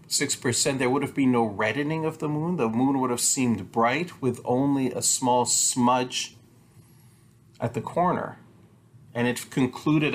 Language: English